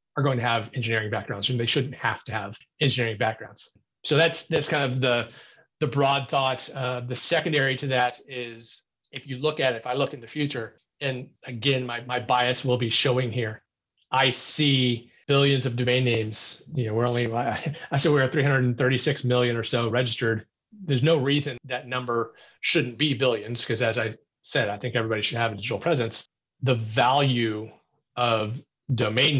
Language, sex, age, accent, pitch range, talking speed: English, male, 30-49, American, 120-140 Hz, 185 wpm